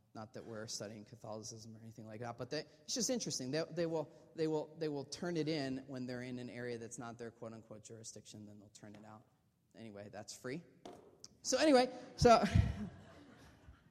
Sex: male